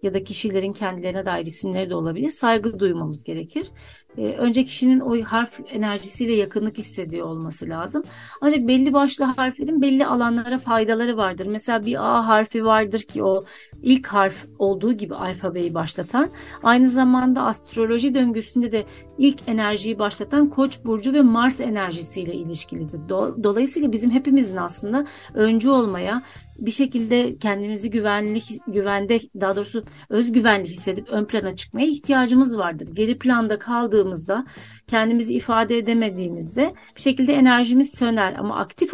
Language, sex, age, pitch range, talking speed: Turkish, female, 40-59, 200-260 Hz, 135 wpm